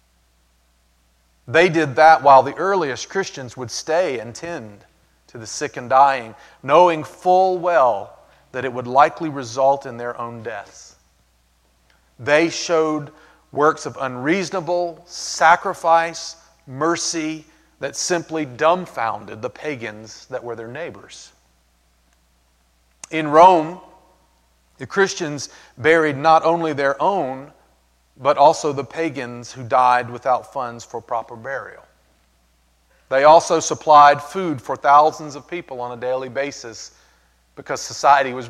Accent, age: American, 40-59